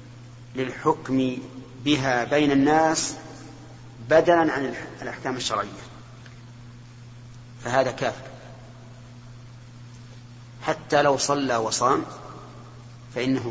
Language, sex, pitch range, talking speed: Arabic, male, 120-135 Hz, 65 wpm